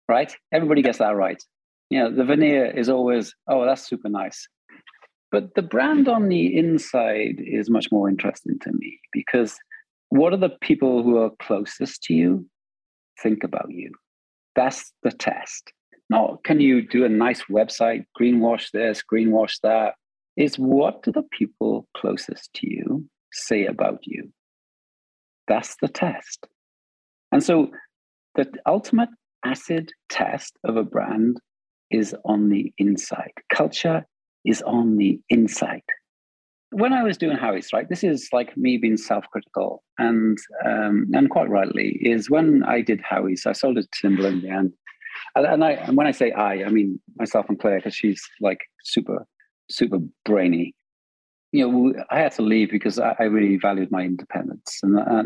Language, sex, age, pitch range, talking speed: English, male, 50-69, 100-140 Hz, 160 wpm